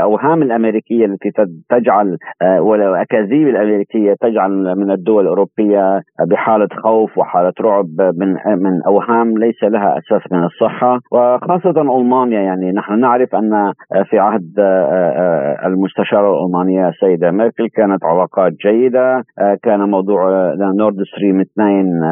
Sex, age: male, 50-69